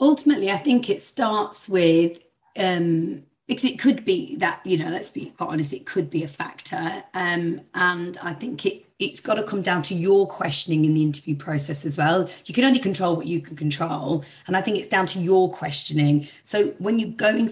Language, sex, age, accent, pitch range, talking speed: English, female, 30-49, British, 165-255 Hz, 215 wpm